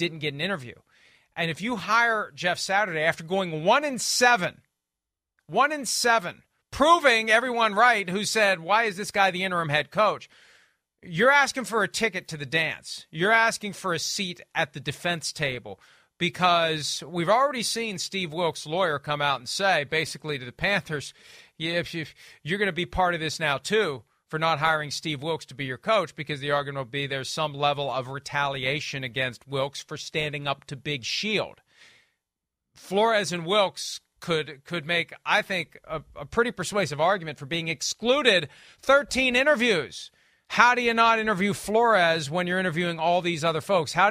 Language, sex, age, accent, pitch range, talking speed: English, male, 40-59, American, 155-205 Hz, 180 wpm